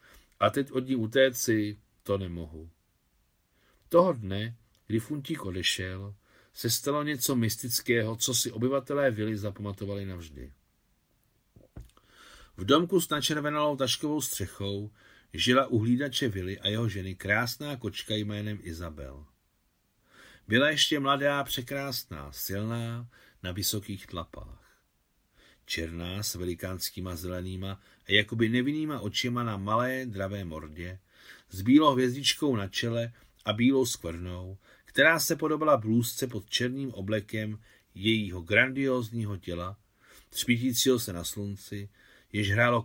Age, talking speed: 50-69, 120 wpm